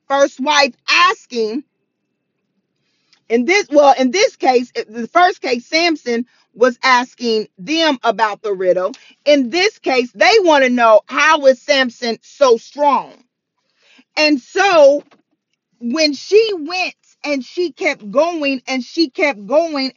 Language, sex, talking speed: English, female, 130 wpm